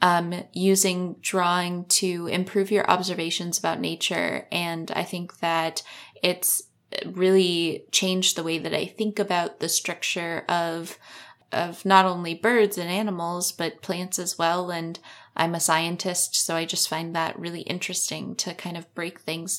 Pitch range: 160-190 Hz